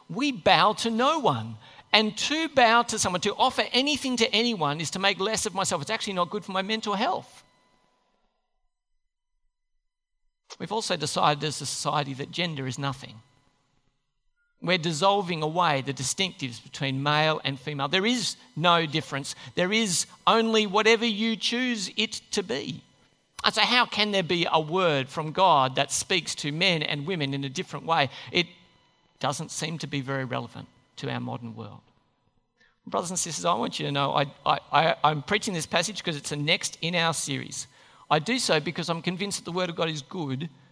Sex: male